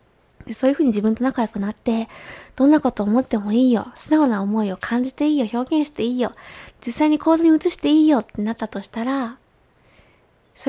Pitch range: 215-275 Hz